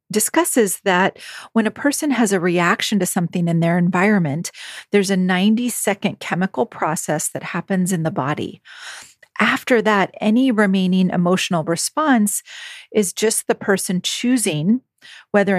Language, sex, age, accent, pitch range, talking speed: English, female, 40-59, American, 175-220 Hz, 135 wpm